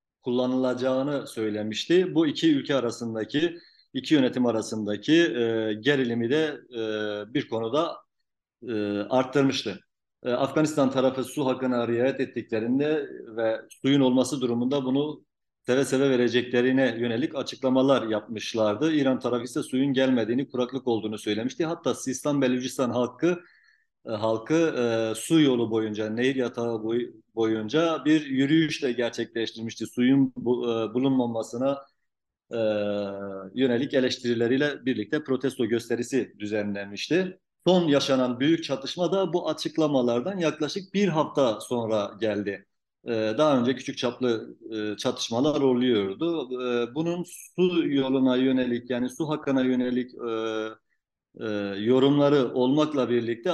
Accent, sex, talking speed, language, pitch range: native, male, 105 wpm, Turkish, 115-145 Hz